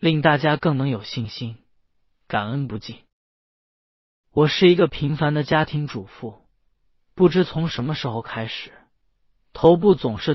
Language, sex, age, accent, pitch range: Chinese, male, 30-49, native, 110-150 Hz